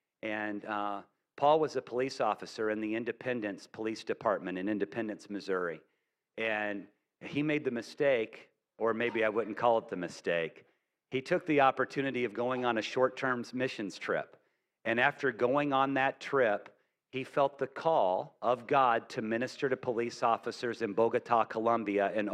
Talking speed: 160 wpm